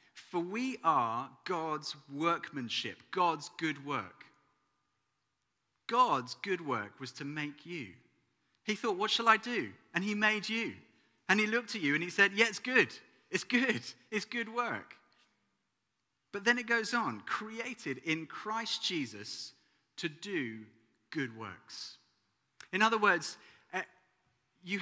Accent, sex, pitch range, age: British, male, 145-205 Hz, 30-49